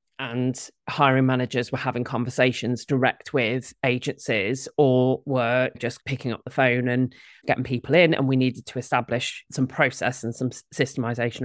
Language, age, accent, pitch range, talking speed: English, 30-49, British, 125-145 Hz, 155 wpm